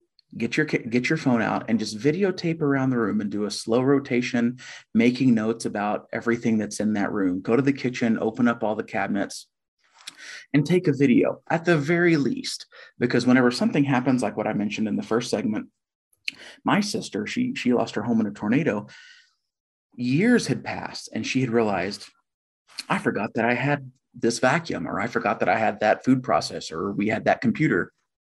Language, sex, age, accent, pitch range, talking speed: English, male, 30-49, American, 105-150 Hz, 195 wpm